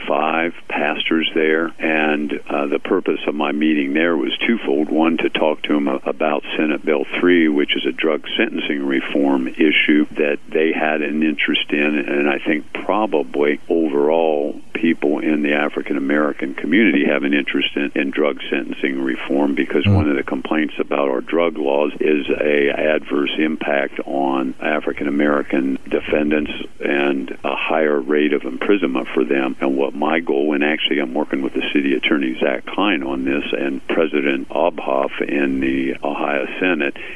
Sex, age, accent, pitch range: male, 50-69, American, 70-75 Hz